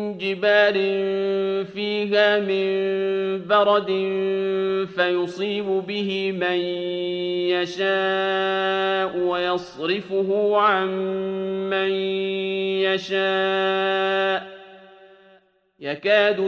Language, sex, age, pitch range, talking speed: Arabic, male, 40-59, 190-195 Hz, 45 wpm